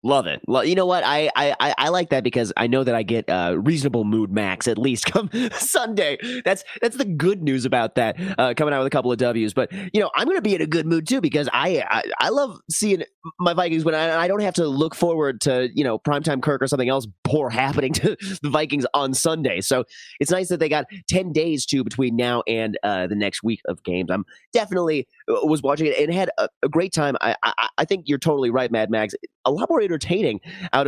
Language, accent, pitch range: English, American, 125-165 Hz